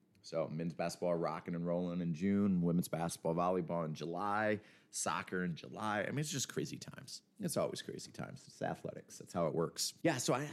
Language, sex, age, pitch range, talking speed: English, male, 30-49, 85-105 Hz, 200 wpm